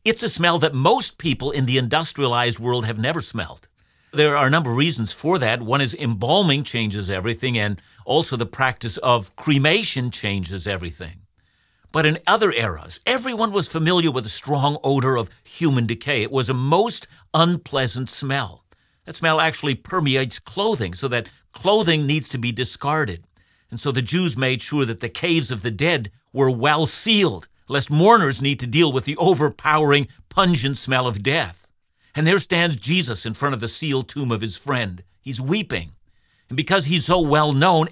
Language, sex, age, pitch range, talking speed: English, male, 50-69, 115-160 Hz, 175 wpm